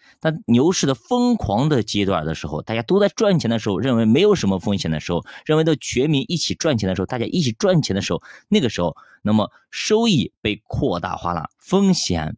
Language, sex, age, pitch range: Chinese, male, 30-49, 90-135 Hz